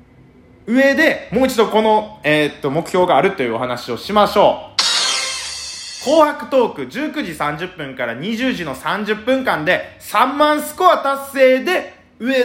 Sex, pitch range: male, 145-240 Hz